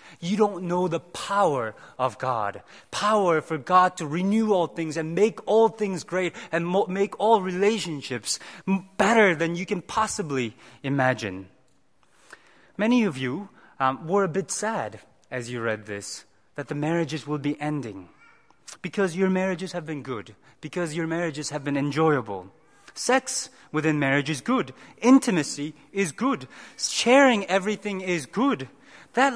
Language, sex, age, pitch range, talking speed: English, male, 30-49, 145-220 Hz, 145 wpm